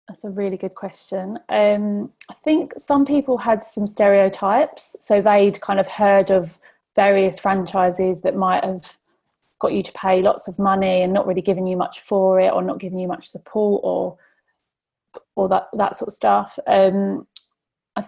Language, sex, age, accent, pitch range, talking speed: English, female, 30-49, British, 185-210 Hz, 180 wpm